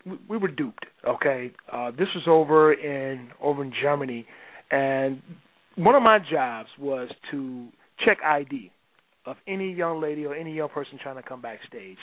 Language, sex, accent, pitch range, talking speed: English, male, American, 145-175 Hz, 165 wpm